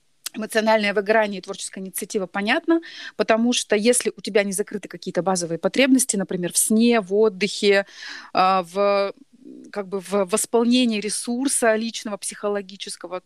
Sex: female